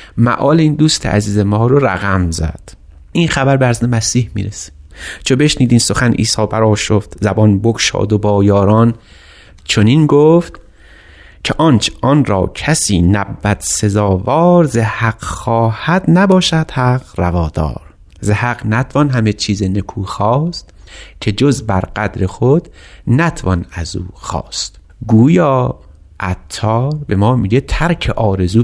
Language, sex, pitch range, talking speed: Persian, male, 95-135 Hz, 130 wpm